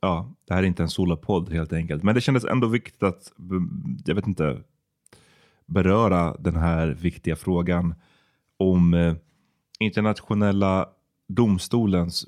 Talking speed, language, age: 125 wpm, Swedish, 30-49